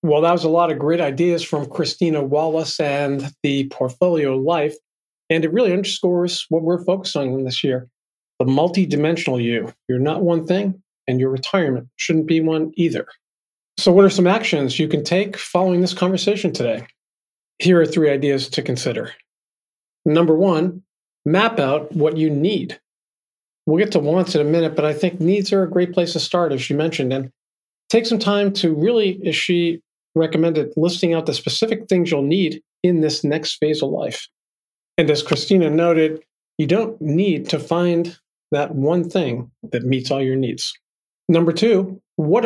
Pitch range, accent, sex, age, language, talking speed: 150-180 Hz, American, male, 40-59, English, 175 wpm